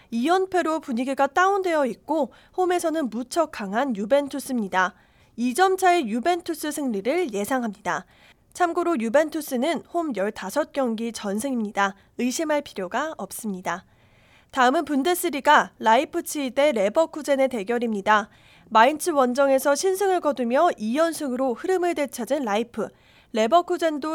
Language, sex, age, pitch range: Korean, female, 20-39, 230-325 Hz